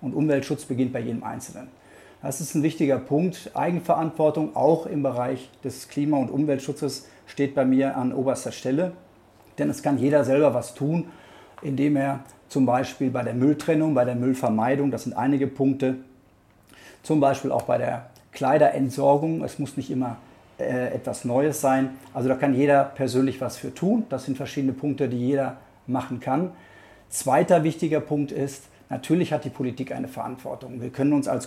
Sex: male